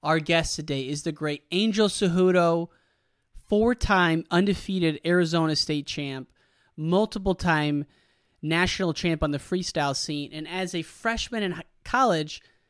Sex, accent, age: male, American, 30-49